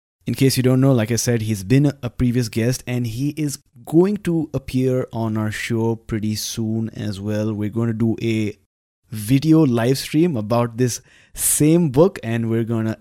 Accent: Indian